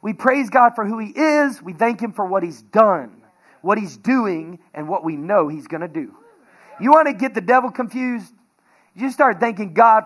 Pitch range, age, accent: 175-225 Hz, 40-59, American